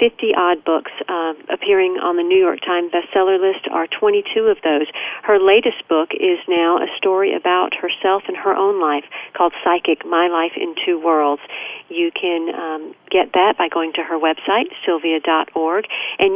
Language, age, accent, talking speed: English, 50-69, American, 170 wpm